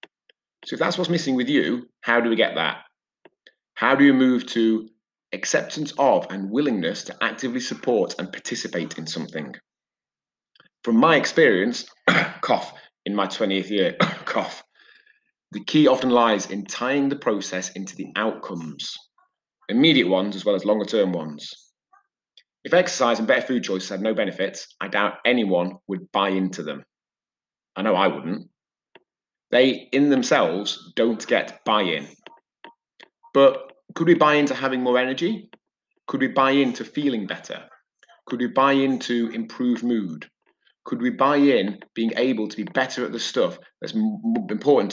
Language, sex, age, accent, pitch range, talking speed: English, male, 30-49, British, 110-145 Hz, 155 wpm